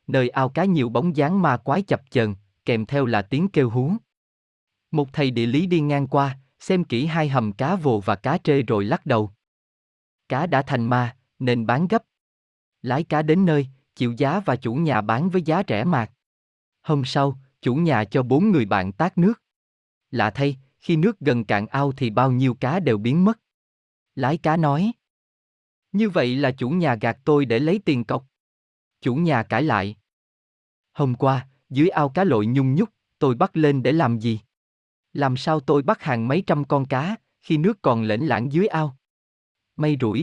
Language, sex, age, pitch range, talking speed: Vietnamese, male, 20-39, 115-160 Hz, 195 wpm